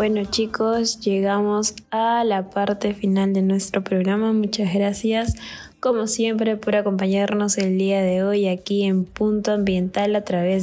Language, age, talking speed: Spanish, 10-29, 145 wpm